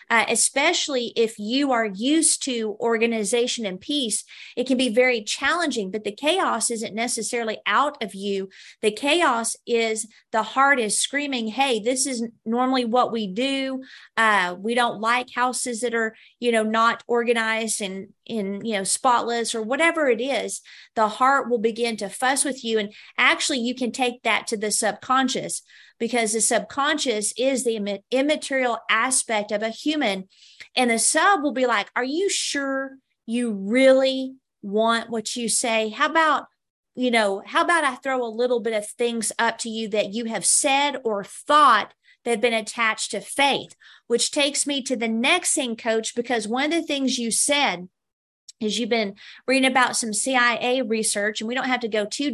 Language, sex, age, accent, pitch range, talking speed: English, female, 40-59, American, 220-265 Hz, 180 wpm